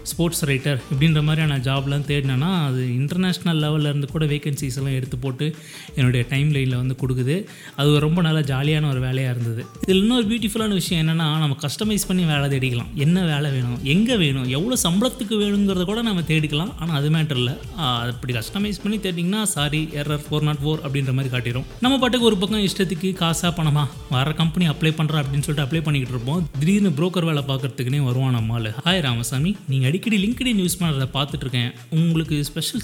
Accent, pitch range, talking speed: native, 135-175 Hz, 170 wpm